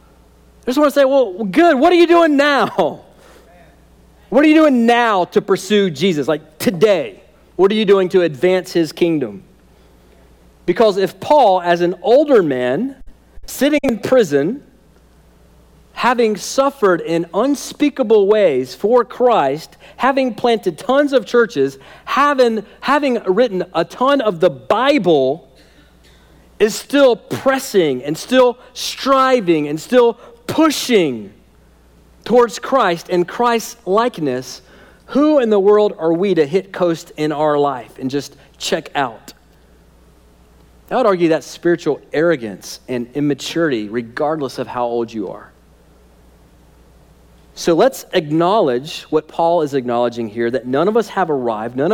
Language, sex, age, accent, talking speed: English, male, 40-59, American, 135 wpm